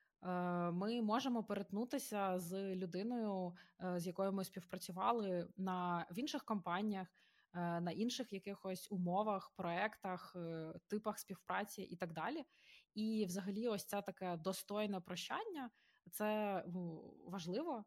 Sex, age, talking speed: female, 20-39, 110 wpm